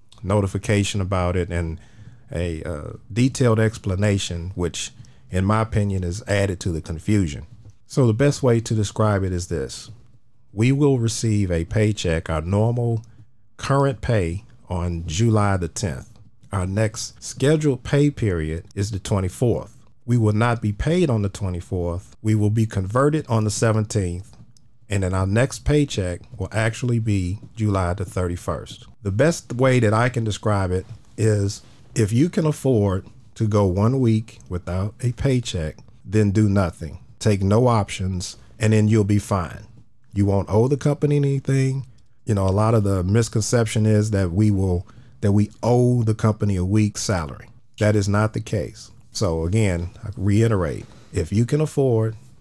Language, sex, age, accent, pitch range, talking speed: English, male, 50-69, American, 100-120 Hz, 165 wpm